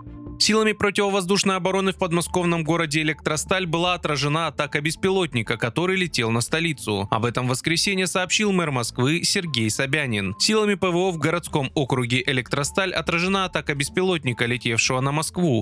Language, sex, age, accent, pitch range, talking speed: Russian, male, 20-39, native, 130-185 Hz, 135 wpm